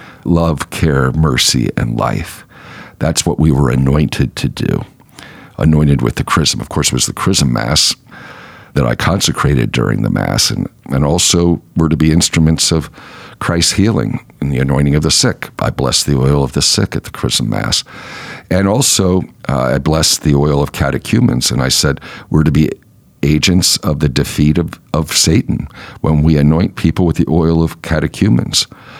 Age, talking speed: 50-69, 180 wpm